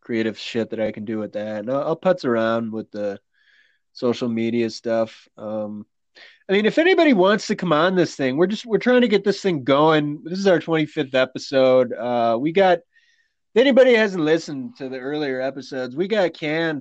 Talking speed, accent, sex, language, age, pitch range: 205 wpm, American, male, English, 20-39, 120-155 Hz